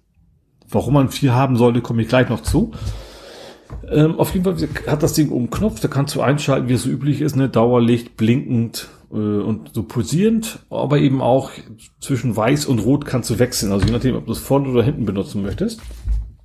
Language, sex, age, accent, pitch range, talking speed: German, male, 40-59, German, 110-140 Hz, 210 wpm